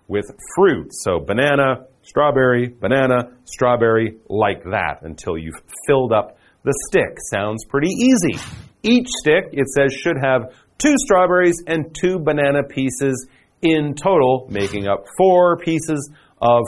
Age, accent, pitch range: 40-59, American, 120-175 Hz